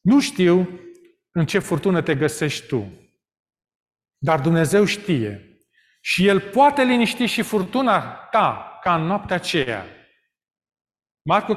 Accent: native